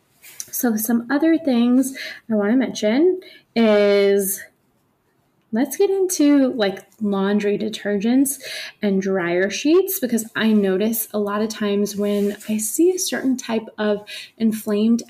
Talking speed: 130 wpm